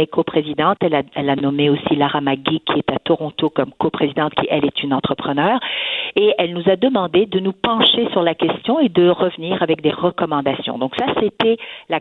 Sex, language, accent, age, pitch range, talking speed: female, French, French, 50-69, 150-200 Hz, 205 wpm